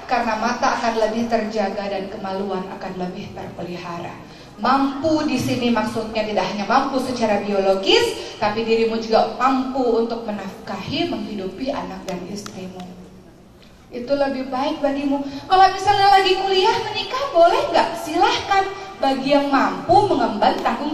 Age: 30-49